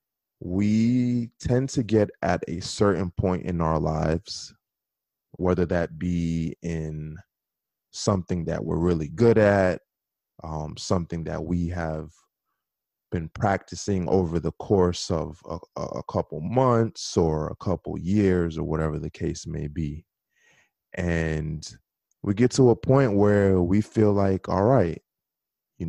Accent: American